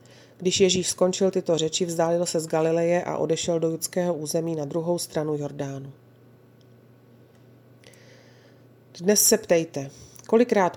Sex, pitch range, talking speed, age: female, 150-190 Hz, 125 wpm, 30-49